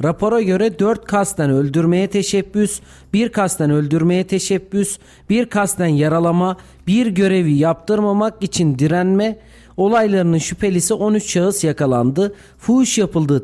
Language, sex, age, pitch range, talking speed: Turkish, male, 40-59, 155-205 Hz, 110 wpm